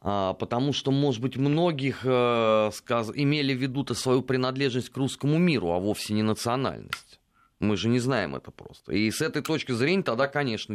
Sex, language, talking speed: male, Russian, 165 wpm